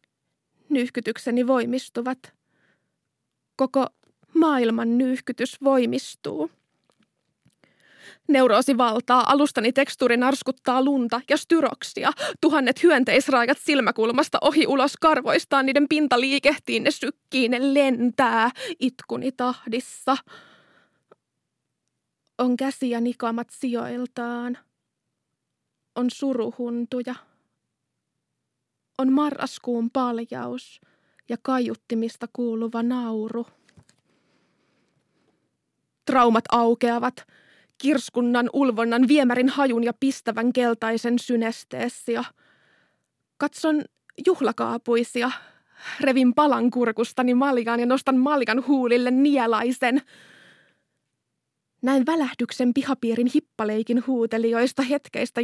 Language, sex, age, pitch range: Finnish, female, 20-39, 235-275 Hz